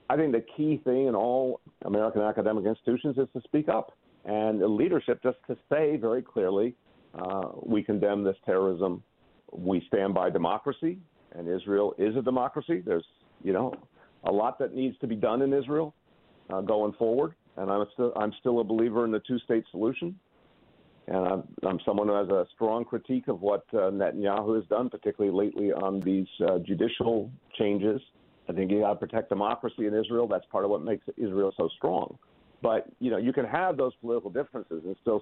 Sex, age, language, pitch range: male, 50-69, English, 100-120 Hz